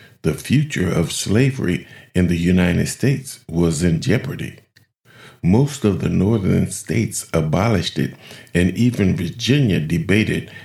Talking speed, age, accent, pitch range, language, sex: 125 wpm, 50-69, American, 80-110 Hz, English, male